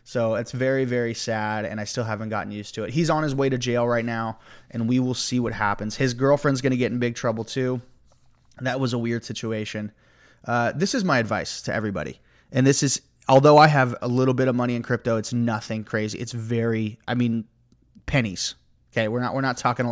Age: 30-49